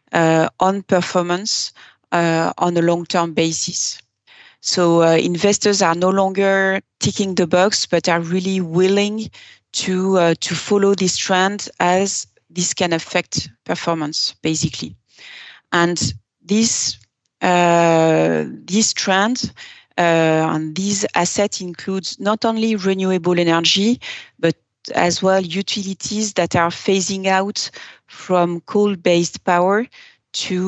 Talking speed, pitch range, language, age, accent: 110 wpm, 165-195 Hz, English, 30-49, French